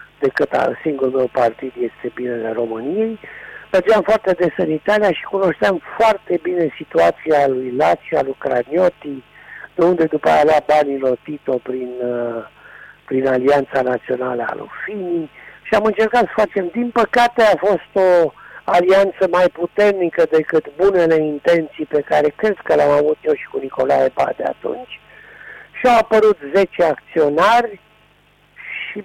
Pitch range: 140-200 Hz